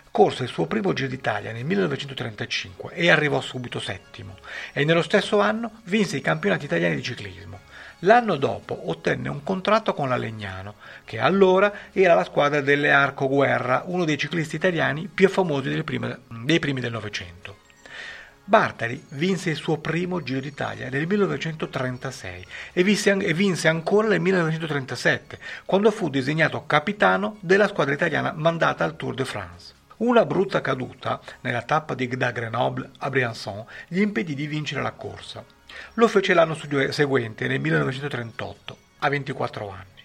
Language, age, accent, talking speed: Italian, 40-59, native, 150 wpm